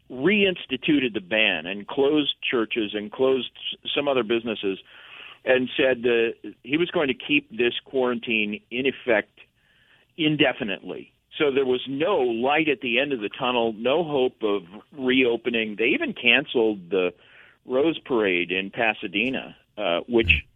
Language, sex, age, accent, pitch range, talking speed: English, male, 50-69, American, 105-130 Hz, 145 wpm